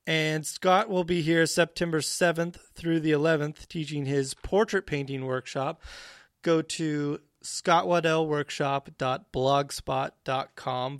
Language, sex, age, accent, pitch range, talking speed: English, male, 30-49, American, 140-180 Hz, 100 wpm